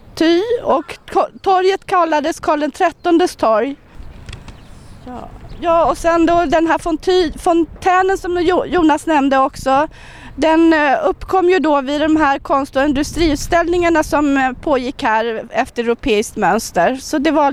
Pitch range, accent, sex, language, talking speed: 260-335 Hz, Swedish, female, English, 125 wpm